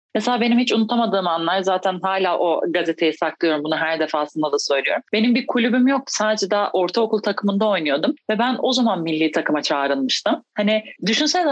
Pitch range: 170-235 Hz